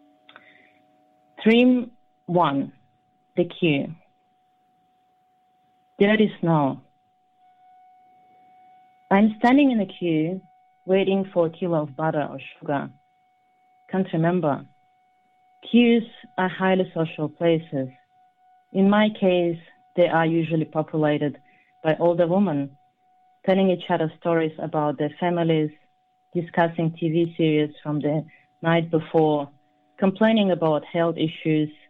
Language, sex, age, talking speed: English, female, 30-49, 105 wpm